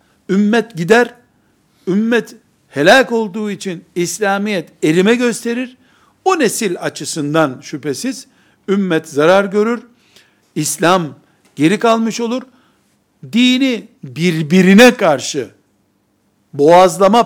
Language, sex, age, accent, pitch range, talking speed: Turkish, male, 60-79, native, 180-240 Hz, 85 wpm